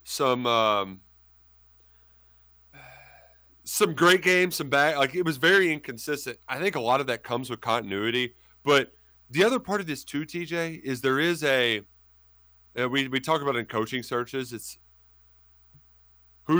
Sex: male